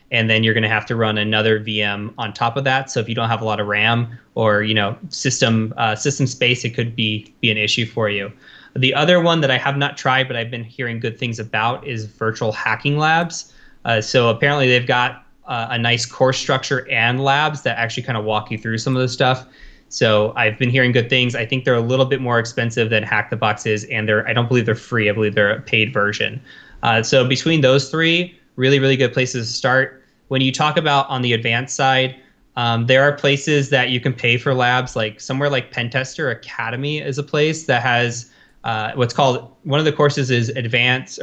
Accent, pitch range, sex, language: American, 115-135 Hz, male, English